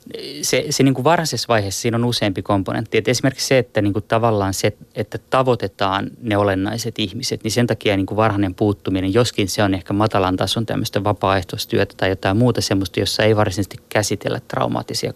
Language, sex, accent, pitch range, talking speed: Finnish, male, native, 95-115 Hz, 180 wpm